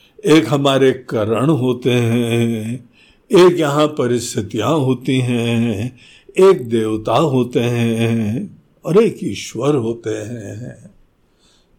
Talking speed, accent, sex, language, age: 95 wpm, native, male, Hindi, 60-79